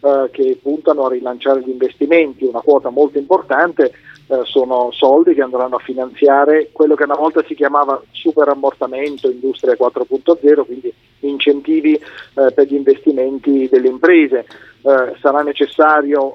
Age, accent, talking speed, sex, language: 40-59, native, 135 wpm, male, Italian